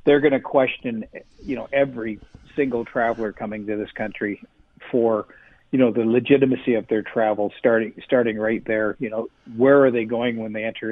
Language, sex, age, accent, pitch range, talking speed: English, male, 50-69, American, 110-130 Hz, 185 wpm